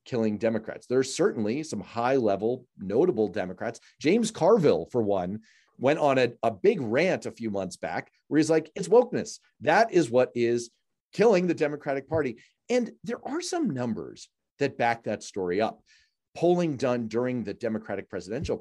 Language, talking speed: English, 170 wpm